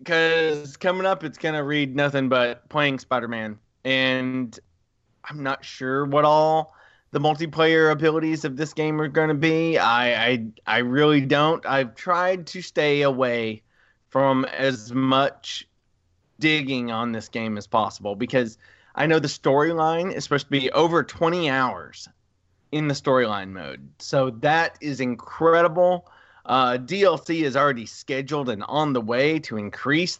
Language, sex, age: English, male, 20-39